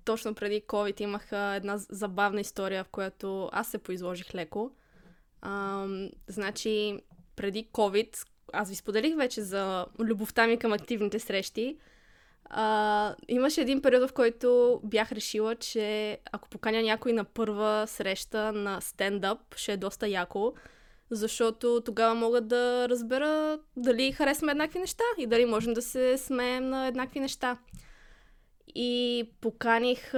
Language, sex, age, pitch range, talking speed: Bulgarian, female, 20-39, 210-255 Hz, 135 wpm